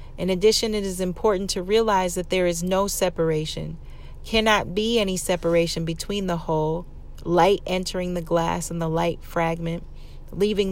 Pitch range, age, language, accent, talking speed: 170-195 Hz, 30-49, English, American, 155 wpm